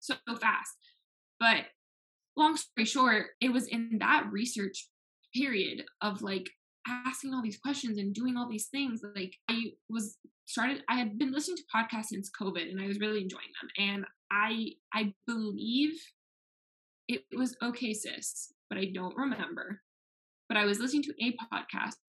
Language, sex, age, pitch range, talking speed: English, female, 10-29, 200-255 Hz, 165 wpm